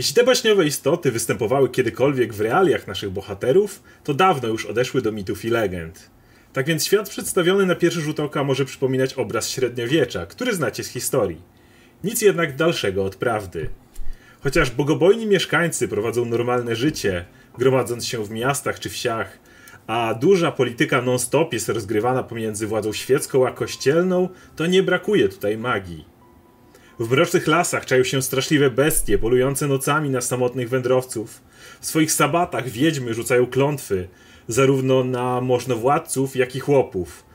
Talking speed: 145 wpm